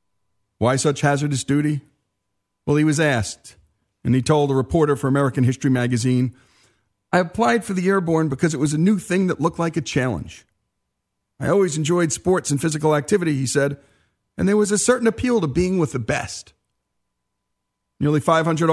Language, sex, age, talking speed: English, male, 50-69, 175 wpm